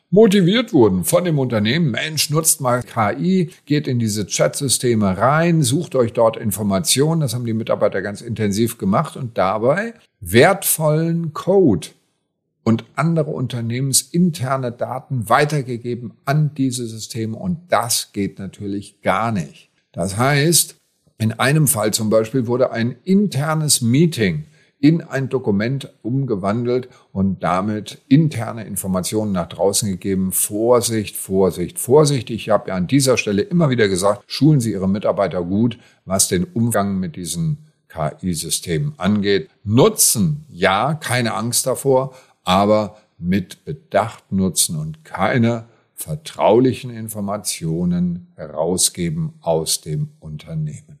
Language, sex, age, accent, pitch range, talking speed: German, male, 50-69, German, 105-155 Hz, 125 wpm